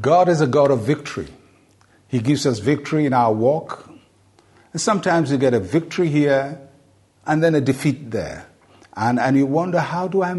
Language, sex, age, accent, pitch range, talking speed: English, male, 50-69, Nigerian, 120-155 Hz, 185 wpm